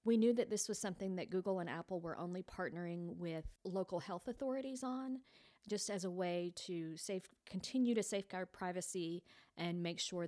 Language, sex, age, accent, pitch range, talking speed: English, female, 40-59, American, 165-195 Hz, 180 wpm